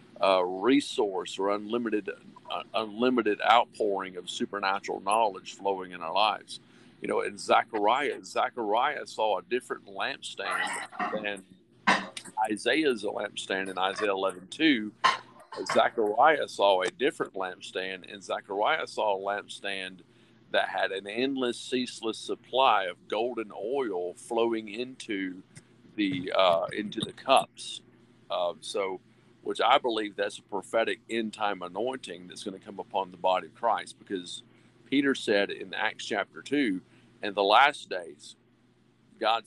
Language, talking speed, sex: English, 130 wpm, male